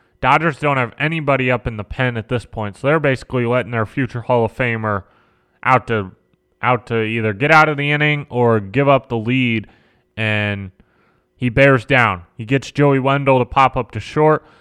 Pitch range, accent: 115-140 Hz, American